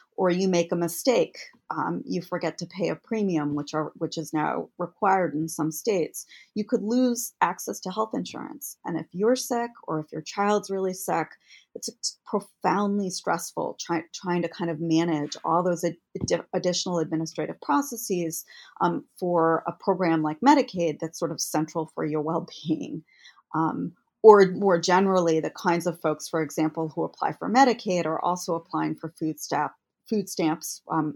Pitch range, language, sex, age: 160-195 Hz, English, female, 30-49